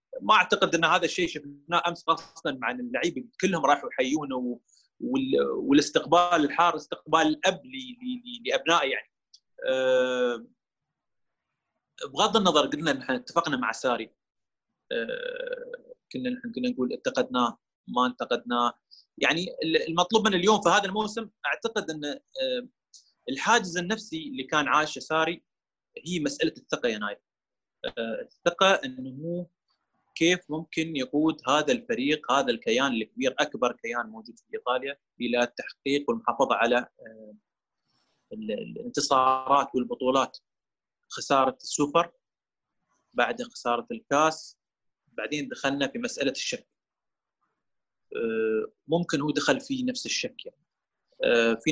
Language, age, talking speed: Arabic, 30-49, 115 wpm